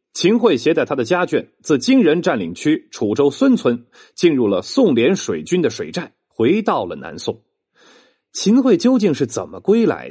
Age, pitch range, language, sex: 30-49, 160-235 Hz, Chinese, male